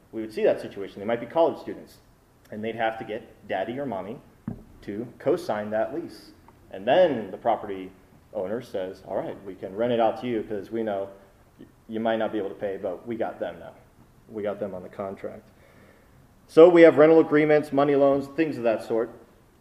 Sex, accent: male, American